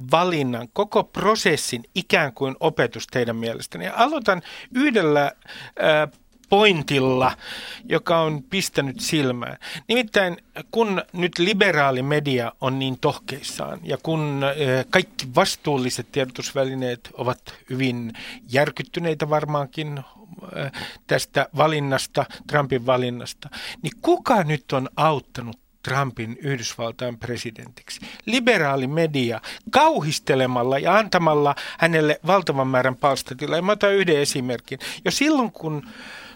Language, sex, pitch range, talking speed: Finnish, male, 130-185 Hz, 100 wpm